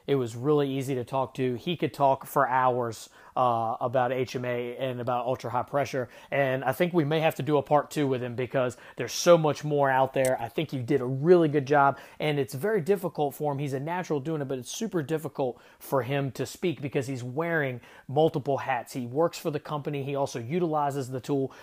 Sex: male